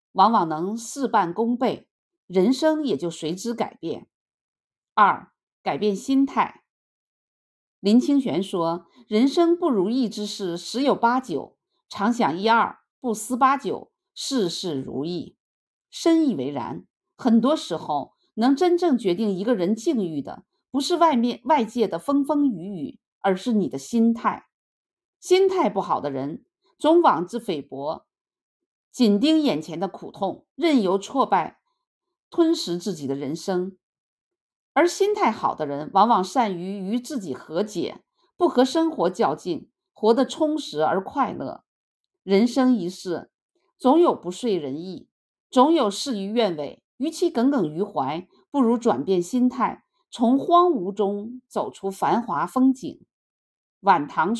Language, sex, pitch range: Chinese, female, 200-310 Hz